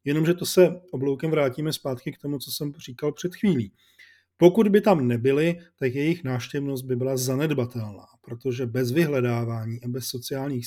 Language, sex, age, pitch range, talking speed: Czech, male, 40-59, 125-155 Hz, 165 wpm